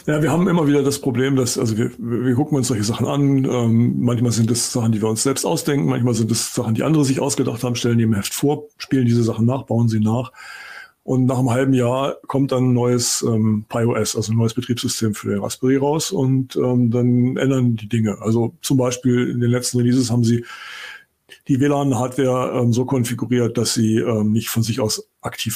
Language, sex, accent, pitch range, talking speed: German, male, German, 115-130 Hz, 220 wpm